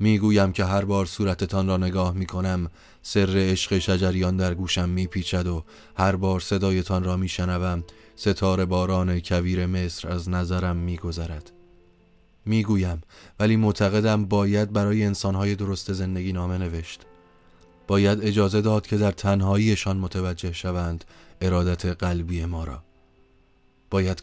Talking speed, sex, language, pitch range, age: 125 wpm, male, Persian, 90-100 Hz, 30-49